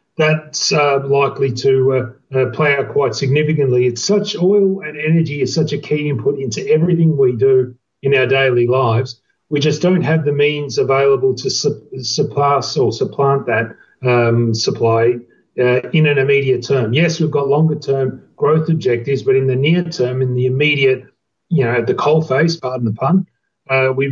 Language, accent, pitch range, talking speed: English, Australian, 125-155 Hz, 190 wpm